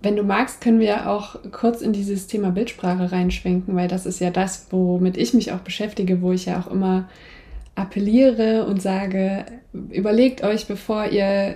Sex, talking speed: female, 175 wpm